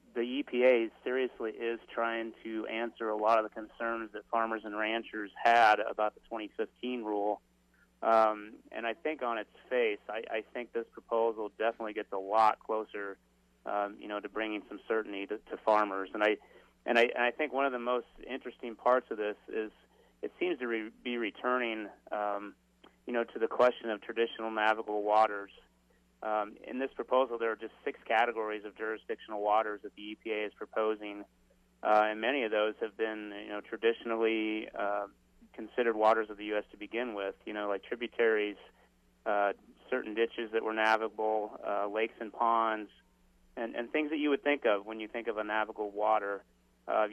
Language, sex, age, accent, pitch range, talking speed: English, male, 30-49, American, 105-115 Hz, 185 wpm